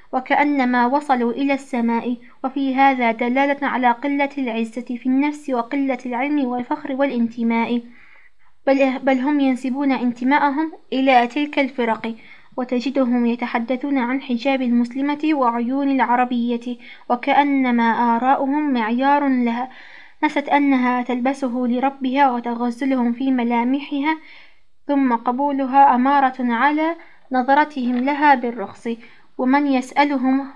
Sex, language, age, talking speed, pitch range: female, Arabic, 20-39, 100 wpm, 245-275 Hz